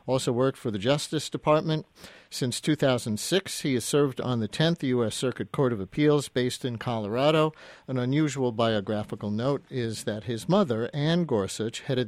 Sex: male